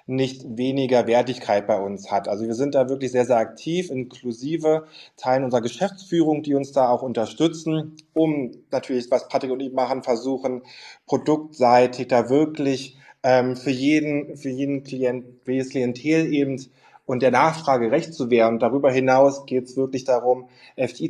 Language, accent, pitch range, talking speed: German, German, 125-145 Hz, 165 wpm